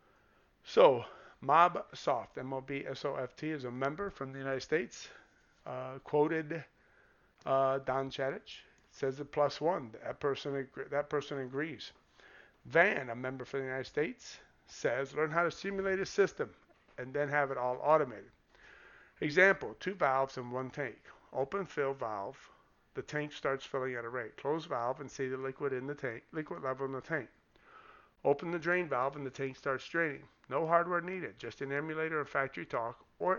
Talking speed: 170 wpm